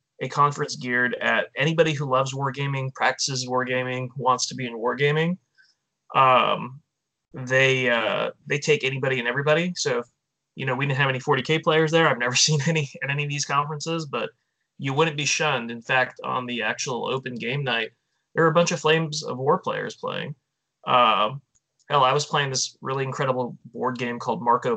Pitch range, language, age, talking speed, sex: 125-150 Hz, English, 20-39, 185 wpm, male